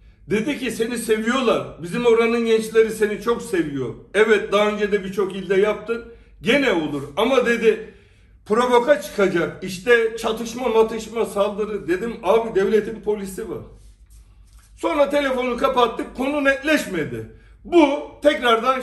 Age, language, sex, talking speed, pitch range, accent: 60-79, Turkish, male, 125 wpm, 165-235 Hz, native